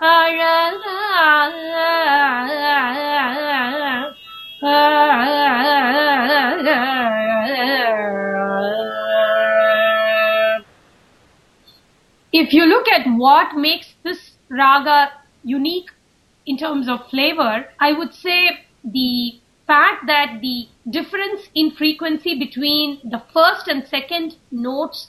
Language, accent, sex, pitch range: English, Indian, female, 250-330 Hz